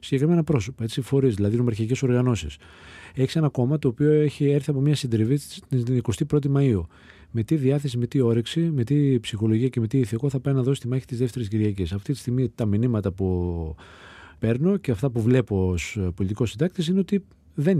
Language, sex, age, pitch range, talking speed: Greek, male, 40-59, 95-140 Hz, 195 wpm